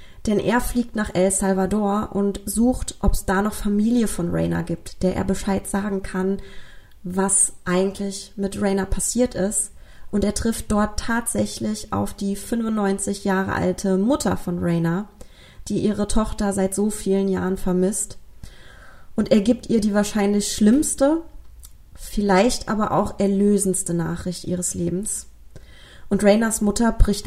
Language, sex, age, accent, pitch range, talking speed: German, female, 20-39, German, 185-205 Hz, 145 wpm